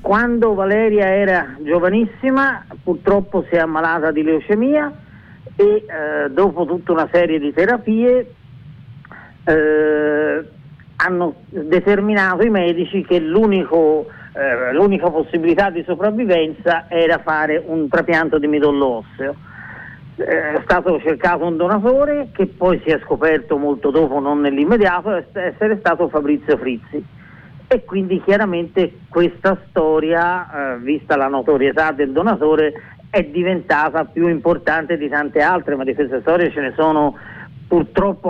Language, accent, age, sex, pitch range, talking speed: Italian, native, 40-59, male, 150-180 Hz, 125 wpm